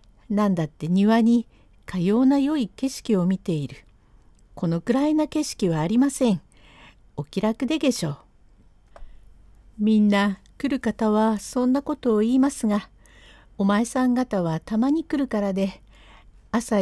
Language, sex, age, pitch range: Japanese, female, 50-69, 170-250 Hz